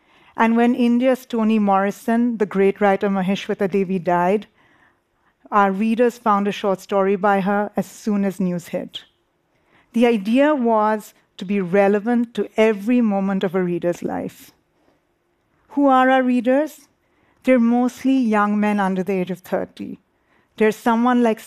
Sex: female